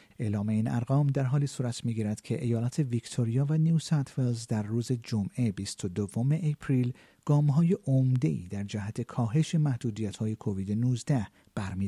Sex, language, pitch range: male, Persian, 105-150 Hz